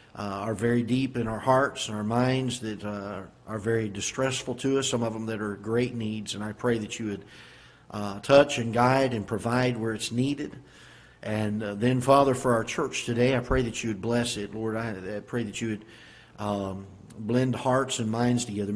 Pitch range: 110-125 Hz